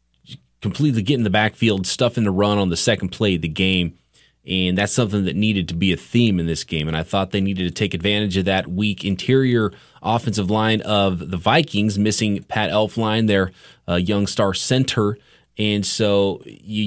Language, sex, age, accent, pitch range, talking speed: English, male, 30-49, American, 95-115 Hz, 195 wpm